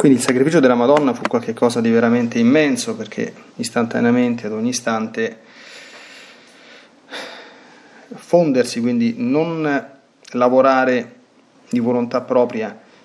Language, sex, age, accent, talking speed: Italian, male, 30-49, native, 100 wpm